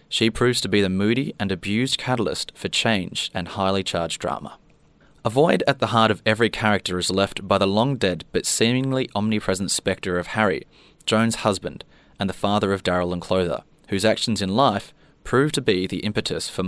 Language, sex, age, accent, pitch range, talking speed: English, male, 20-39, Australian, 95-115 Hz, 190 wpm